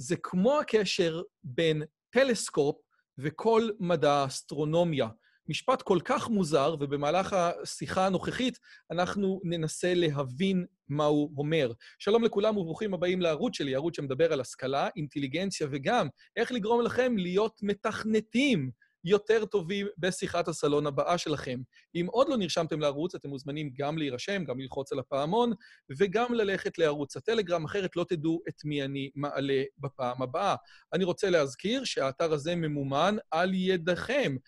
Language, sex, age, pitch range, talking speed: Hebrew, male, 30-49, 150-205 Hz, 135 wpm